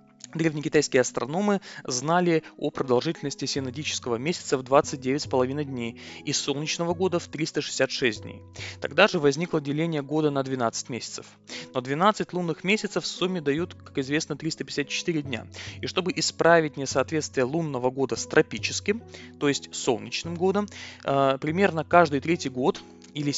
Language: Russian